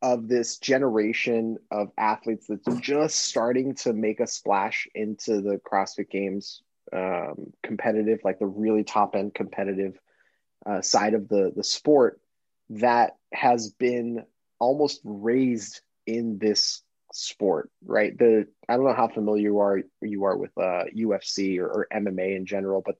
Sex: male